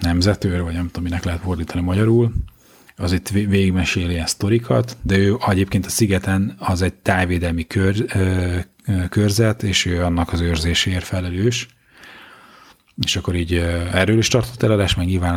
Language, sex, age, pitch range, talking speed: Hungarian, male, 30-49, 90-105 Hz, 150 wpm